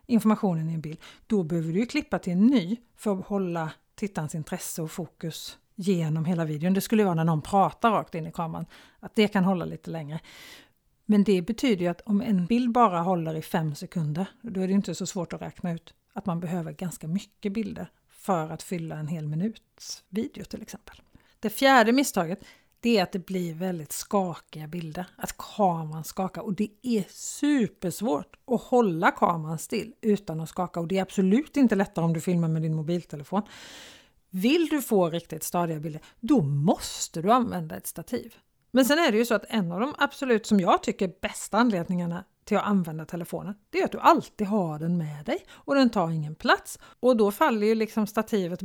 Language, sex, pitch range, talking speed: Swedish, female, 175-225 Hz, 200 wpm